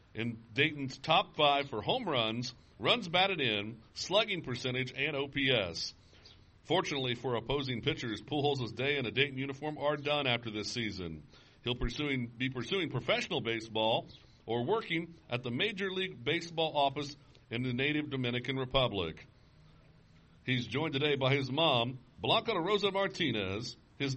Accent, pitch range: American, 110-155 Hz